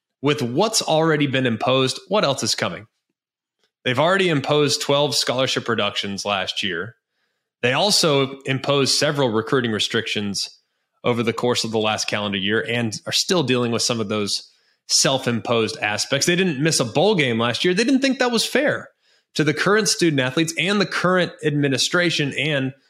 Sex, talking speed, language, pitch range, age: male, 170 wpm, English, 115-155 Hz, 20-39